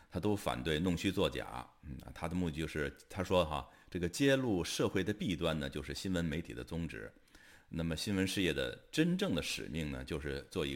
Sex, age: male, 50-69